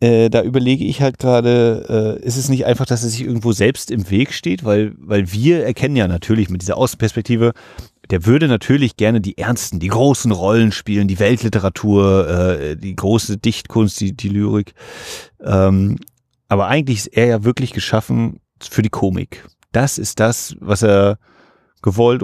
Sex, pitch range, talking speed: male, 100-125 Hz, 175 wpm